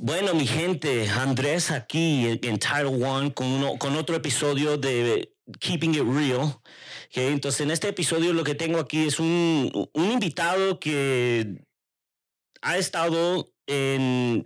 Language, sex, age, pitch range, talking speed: English, male, 40-59, 130-165 Hz, 145 wpm